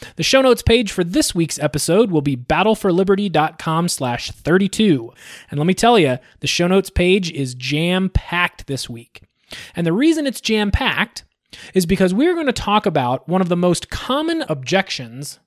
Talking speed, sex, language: 165 wpm, male, English